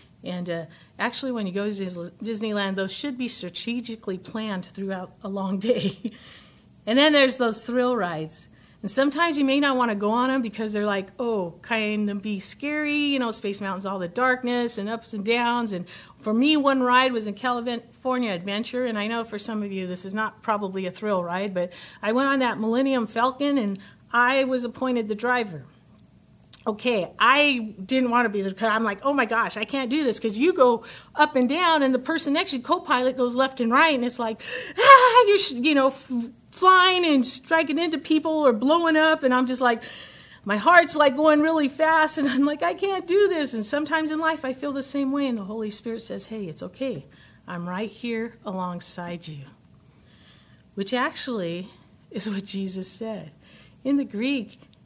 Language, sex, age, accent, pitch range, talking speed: English, female, 50-69, American, 205-275 Hz, 200 wpm